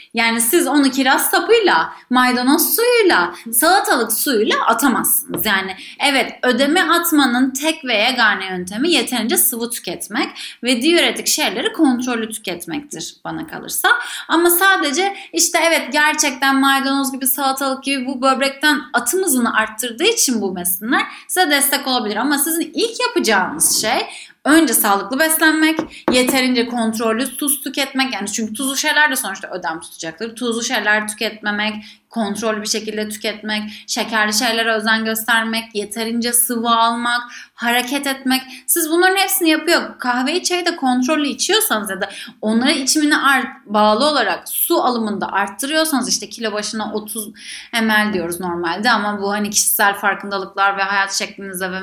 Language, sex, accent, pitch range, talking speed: Turkish, female, native, 215-305 Hz, 140 wpm